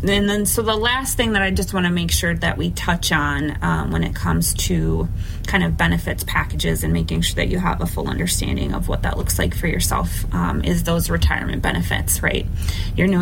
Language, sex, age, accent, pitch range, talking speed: English, female, 20-39, American, 85-95 Hz, 225 wpm